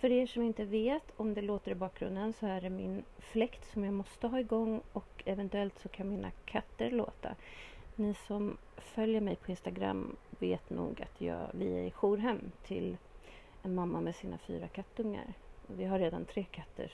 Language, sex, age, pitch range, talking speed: Swedish, female, 30-49, 185-235 Hz, 190 wpm